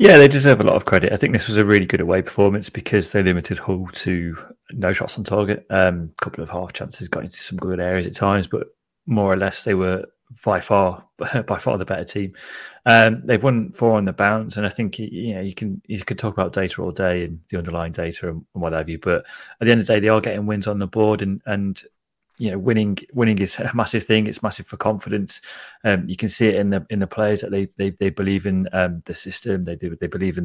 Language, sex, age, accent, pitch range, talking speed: English, male, 30-49, British, 90-105 Hz, 260 wpm